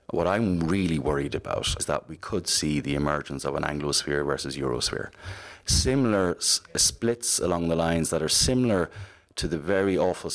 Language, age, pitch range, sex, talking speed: English, 30-49, 75-90 Hz, male, 175 wpm